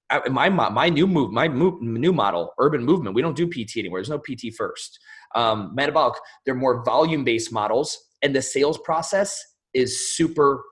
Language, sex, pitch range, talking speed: English, male, 120-155 Hz, 180 wpm